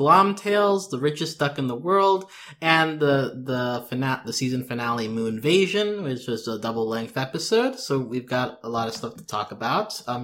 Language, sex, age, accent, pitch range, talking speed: English, male, 20-39, American, 110-145 Hz, 195 wpm